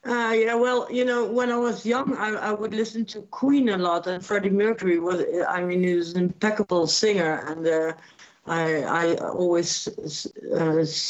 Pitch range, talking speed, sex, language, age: 165-195 Hz, 185 wpm, female, English, 60-79